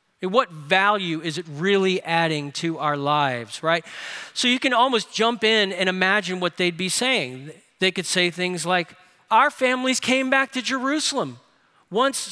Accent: American